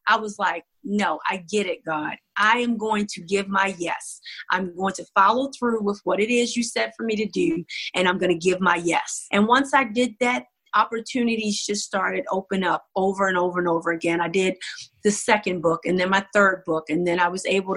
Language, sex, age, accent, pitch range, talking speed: English, female, 30-49, American, 185-235 Hz, 230 wpm